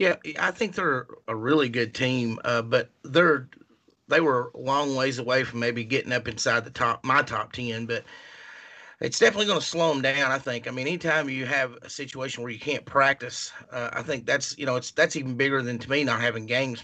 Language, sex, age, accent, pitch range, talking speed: English, male, 30-49, American, 125-145 Hz, 230 wpm